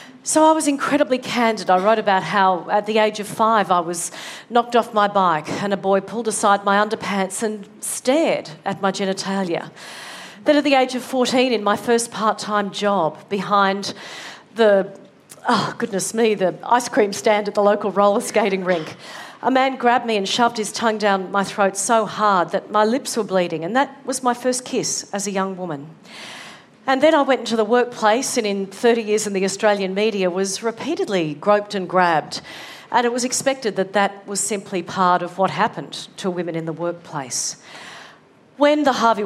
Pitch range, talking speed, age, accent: 190-240 Hz, 195 wpm, 40-59, Australian